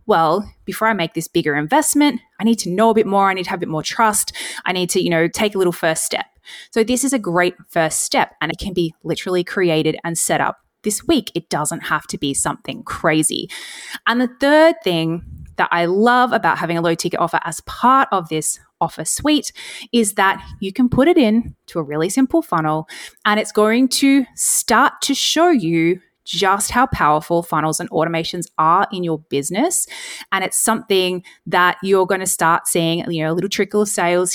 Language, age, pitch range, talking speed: English, 20-39, 170-235 Hz, 215 wpm